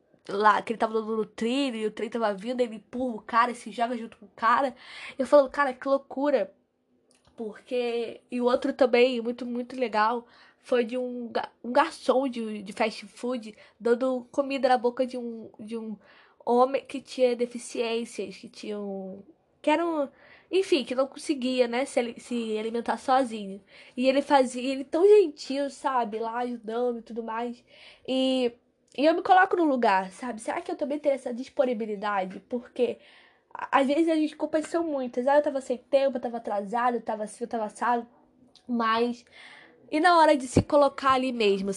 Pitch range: 225-270 Hz